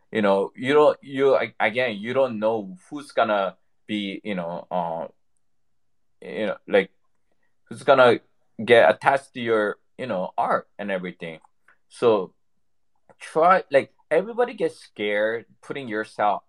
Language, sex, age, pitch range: Japanese, male, 20-39, 100-135 Hz